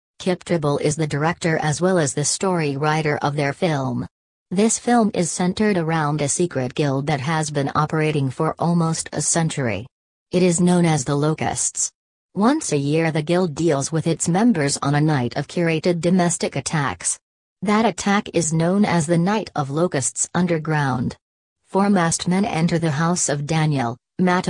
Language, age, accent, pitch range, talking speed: English, 40-59, American, 145-175 Hz, 175 wpm